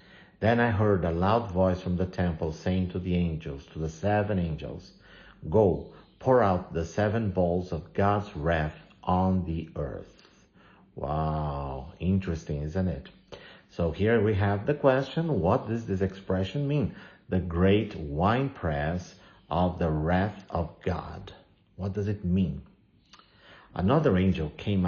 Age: 50-69